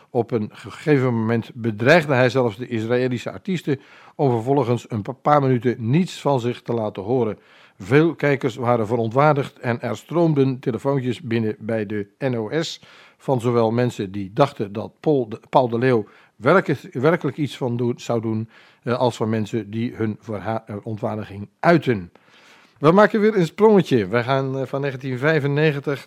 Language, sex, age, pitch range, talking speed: Dutch, male, 50-69, 115-150 Hz, 150 wpm